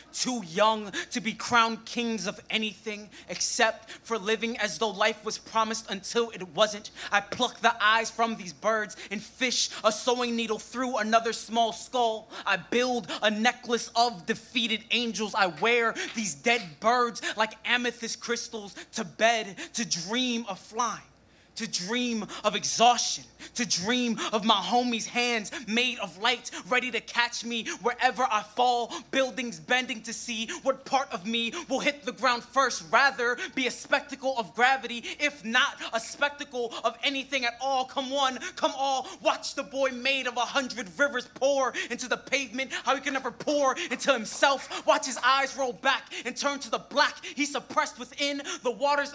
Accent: American